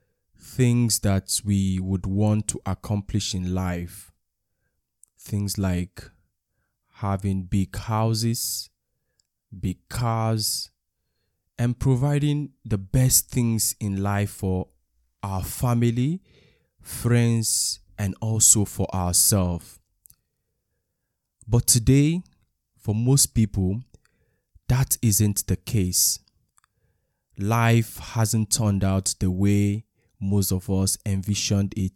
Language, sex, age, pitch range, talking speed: English, male, 20-39, 95-115 Hz, 95 wpm